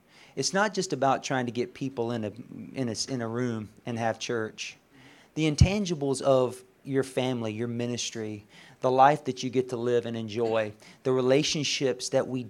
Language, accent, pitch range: English, American, 125-165 Hz